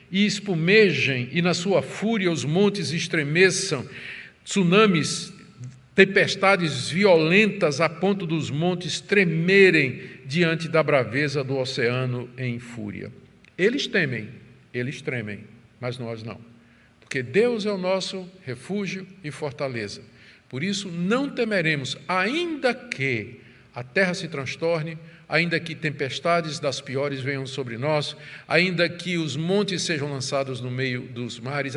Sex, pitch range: male, 130-185 Hz